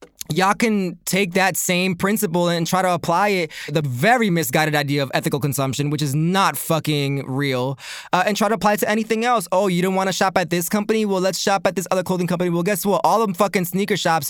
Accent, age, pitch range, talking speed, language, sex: American, 20-39, 160-195 Hz, 240 wpm, English, male